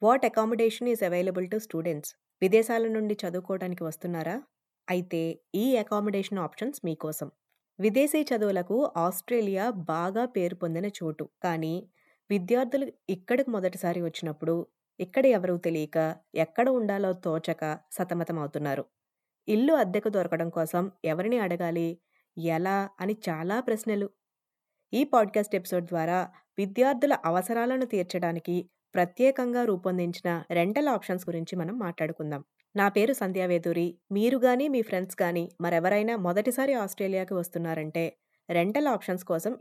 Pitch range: 170-220 Hz